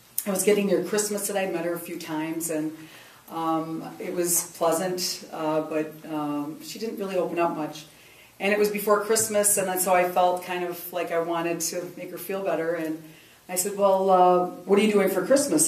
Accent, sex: American, female